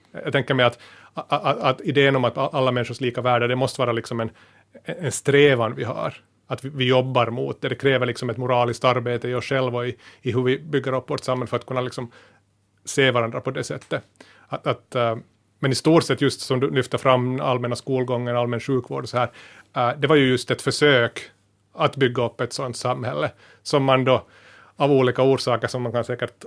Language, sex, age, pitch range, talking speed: Finnish, male, 30-49, 120-135 Hz, 215 wpm